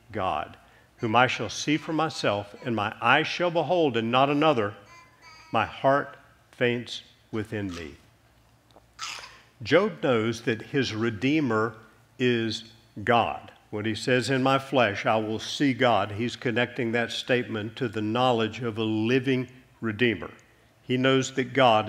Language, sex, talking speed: English, male, 145 wpm